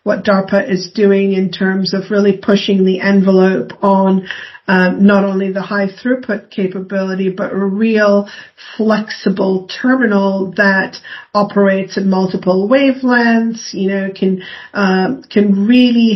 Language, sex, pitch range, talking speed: English, female, 190-210 Hz, 130 wpm